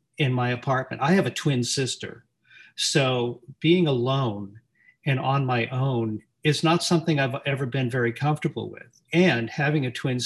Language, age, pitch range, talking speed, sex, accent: English, 40-59, 120-150 Hz, 165 wpm, male, American